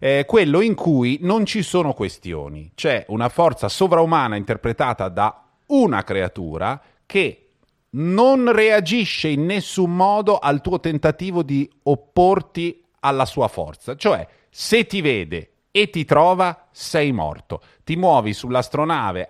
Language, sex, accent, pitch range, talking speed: Italian, male, native, 120-170 Hz, 130 wpm